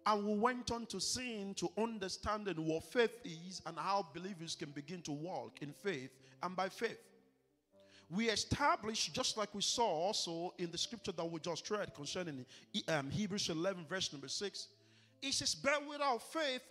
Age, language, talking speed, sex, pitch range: 50-69, English, 170 wpm, male, 165-235 Hz